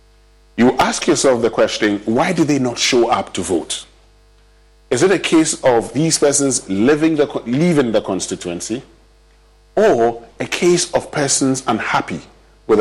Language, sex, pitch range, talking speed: English, male, 100-140 Hz, 145 wpm